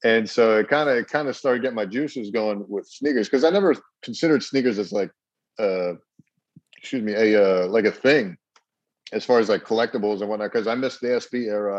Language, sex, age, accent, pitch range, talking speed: English, male, 40-59, American, 100-130 Hz, 215 wpm